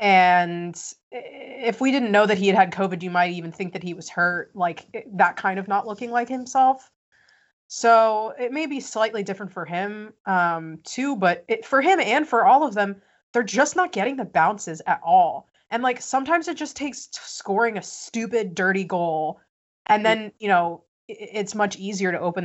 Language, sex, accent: English, female, American